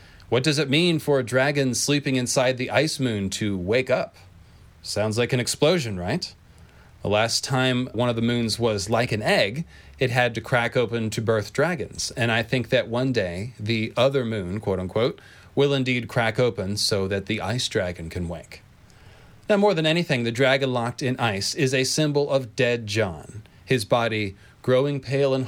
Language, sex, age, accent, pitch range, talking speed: English, male, 30-49, American, 105-135 Hz, 190 wpm